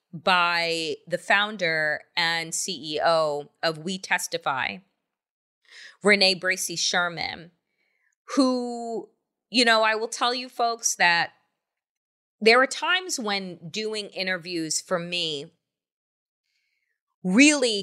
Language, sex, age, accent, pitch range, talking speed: English, female, 30-49, American, 165-220 Hz, 100 wpm